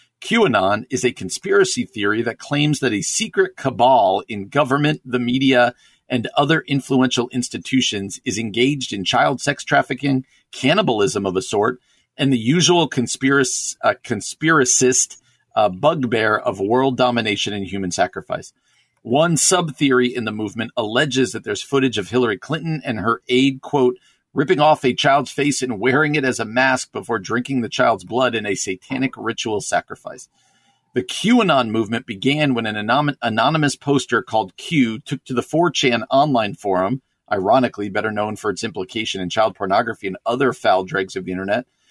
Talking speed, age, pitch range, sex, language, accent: 160 wpm, 50-69, 110-140 Hz, male, English, American